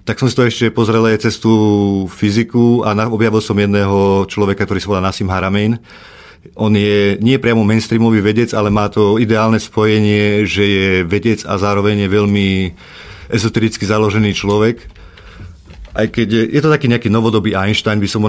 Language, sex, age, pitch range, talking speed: Slovak, male, 40-59, 100-110 Hz, 170 wpm